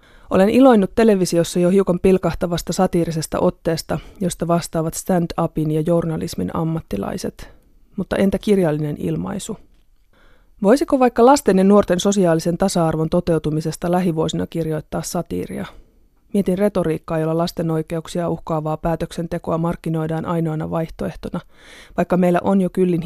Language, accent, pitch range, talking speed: Finnish, native, 165-190 Hz, 115 wpm